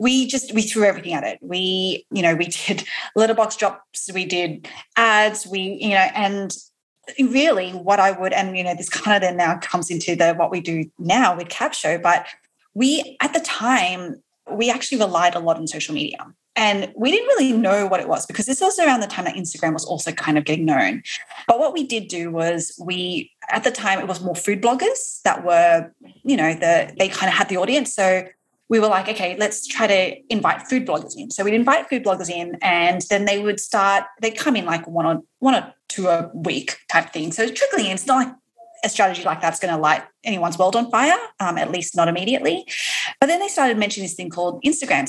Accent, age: Australian, 20-39